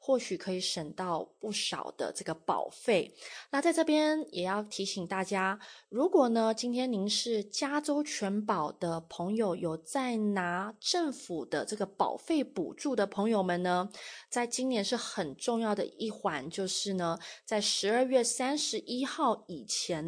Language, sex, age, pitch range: Chinese, female, 20-39, 190-235 Hz